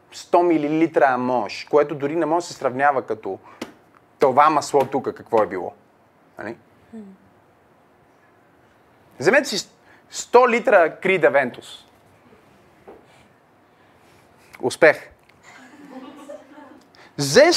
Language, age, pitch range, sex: Bulgarian, 30-49, 155-230 Hz, male